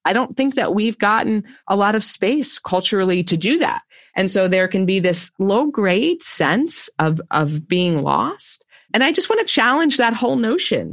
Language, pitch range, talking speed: English, 180-265 Hz, 200 wpm